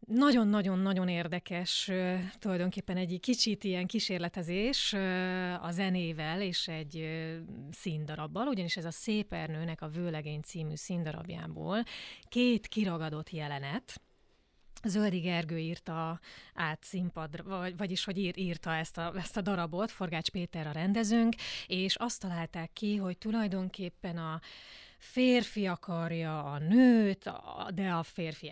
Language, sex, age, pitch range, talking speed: Hungarian, female, 30-49, 165-200 Hz, 125 wpm